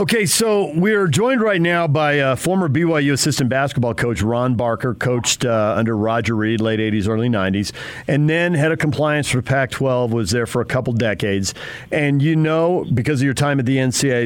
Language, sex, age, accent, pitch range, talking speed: English, male, 50-69, American, 120-150 Hz, 200 wpm